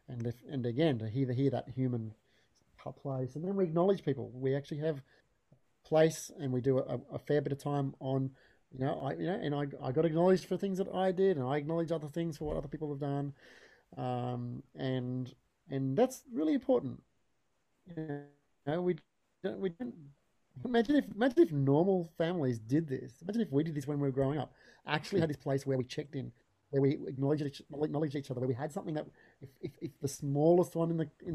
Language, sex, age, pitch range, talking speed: English, male, 30-49, 135-170 Hz, 215 wpm